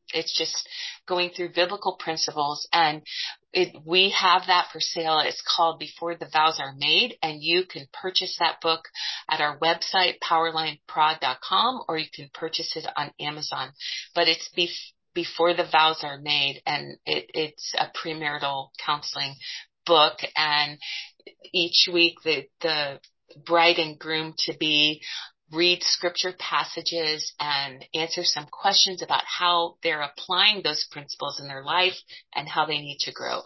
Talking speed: 140 wpm